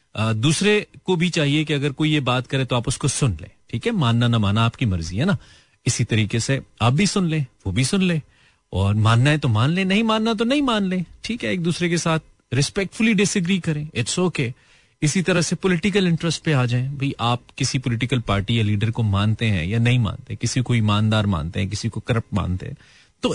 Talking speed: 230 wpm